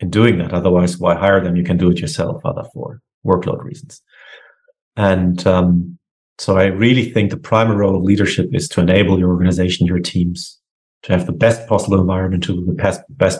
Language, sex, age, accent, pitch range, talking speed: English, male, 30-49, German, 95-125 Hz, 195 wpm